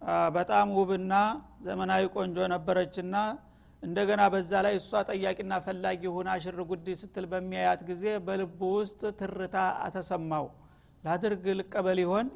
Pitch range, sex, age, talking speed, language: 180-200 Hz, male, 50-69, 115 wpm, Amharic